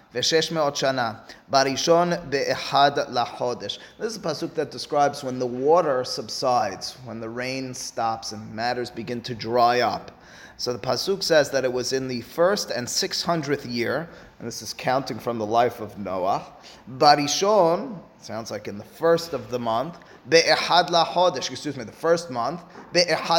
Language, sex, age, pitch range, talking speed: English, male, 30-49, 130-195 Hz, 145 wpm